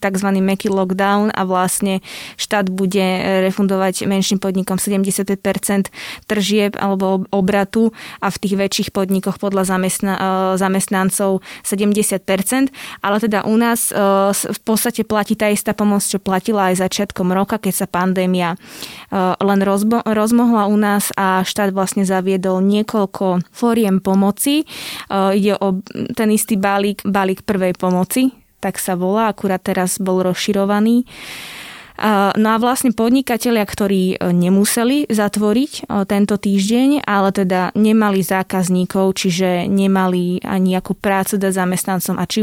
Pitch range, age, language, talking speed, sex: 190-210 Hz, 20-39, Slovak, 125 wpm, female